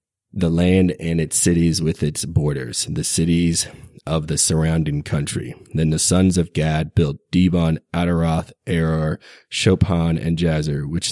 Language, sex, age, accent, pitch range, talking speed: English, male, 20-39, American, 75-85 Hz, 145 wpm